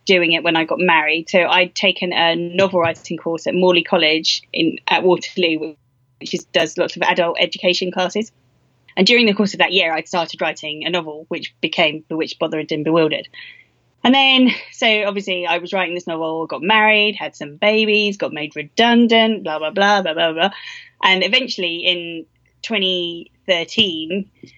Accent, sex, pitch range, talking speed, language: British, female, 165-210 Hz, 180 wpm, English